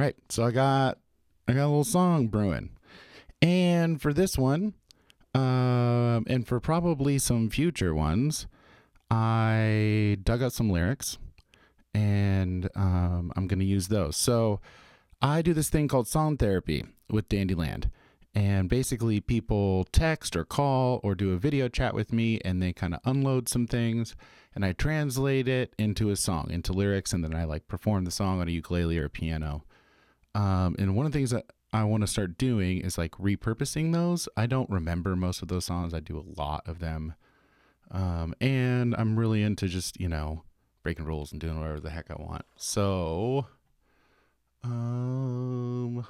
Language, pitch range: English, 85-125 Hz